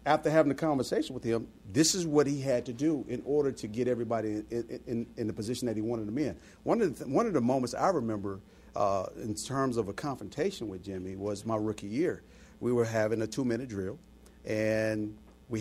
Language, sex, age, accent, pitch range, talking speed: English, male, 50-69, American, 110-140 Hz, 225 wpm